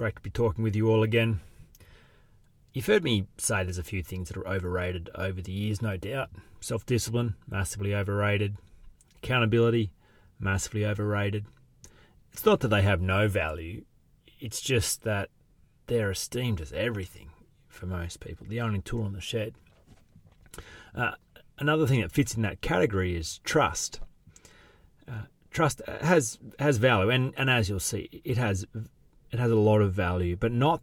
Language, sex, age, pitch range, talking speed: English, male, 30-49, 95-115 Hz, 165 wpm